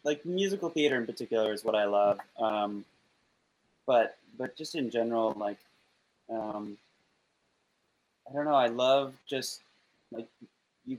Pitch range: 105-130 Hz